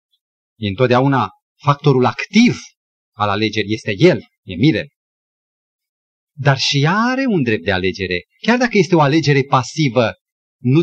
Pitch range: 115-185 Hz